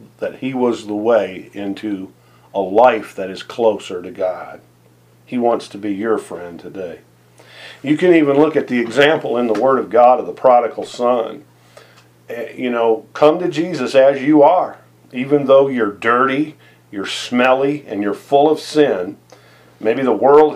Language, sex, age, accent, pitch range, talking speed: English, male, 50-69, American, 110-150 Hz, 170 wpm